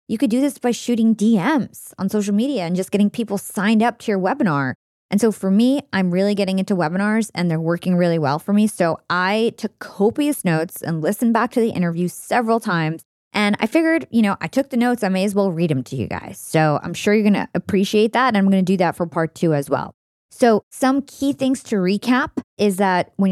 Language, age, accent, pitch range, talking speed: English, 20-39, American, 170-220 Hz, 240 wpm